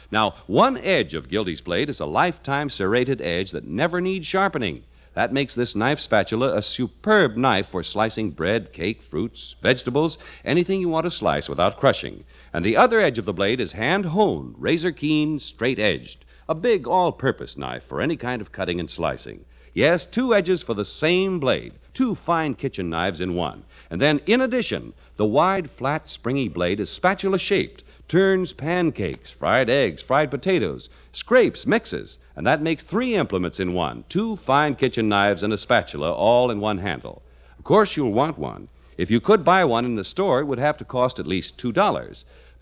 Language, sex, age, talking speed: English, male, 60-79, 180 wpm